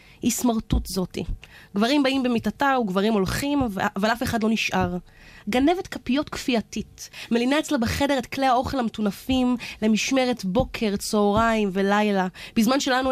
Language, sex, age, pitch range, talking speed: Hebrew, female, 20-39, 205-260 Hz, 135 wpm